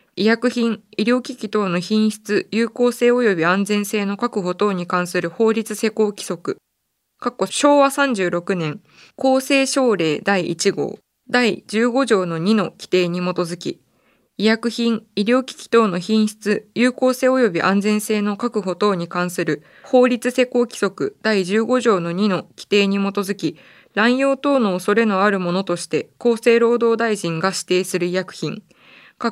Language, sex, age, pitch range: Japanese, female, 20-39, 185-230 Hz